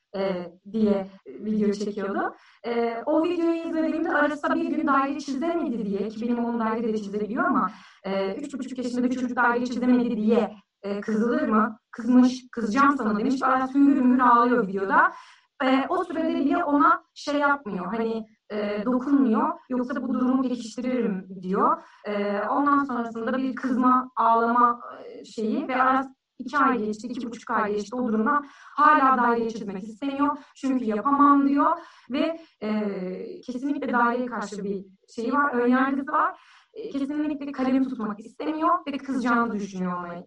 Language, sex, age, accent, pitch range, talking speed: Turkish, female, 30-49, native, 225-285 Hz, 150 wpm